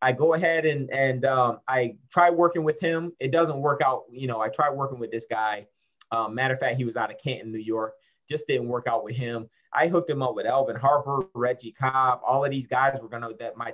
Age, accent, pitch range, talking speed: 30-49, American, 120-160 Hz, 250 wpm